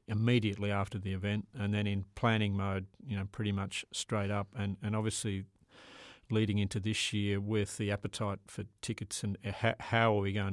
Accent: Australian